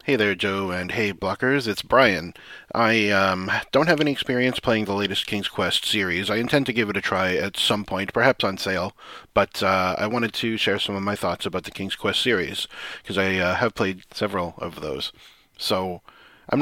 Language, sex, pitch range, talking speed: English, male, 90-105 Hz, 210 wpm